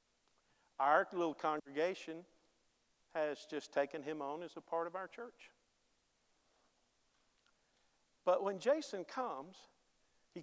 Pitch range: 130-185 Hz